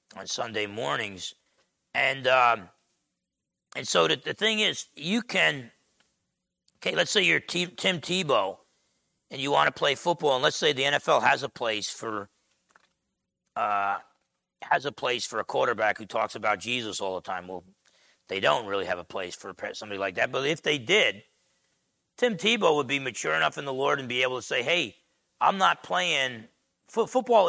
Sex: male